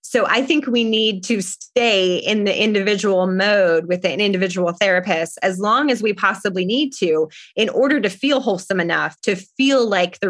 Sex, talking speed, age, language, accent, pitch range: female, 185 wpm, 20-39, English, American, 180-230 Hz